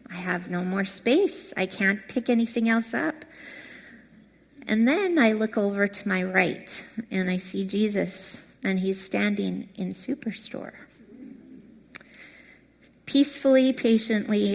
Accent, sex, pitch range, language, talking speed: American, female, 190-250 Hz, English, 125 wpm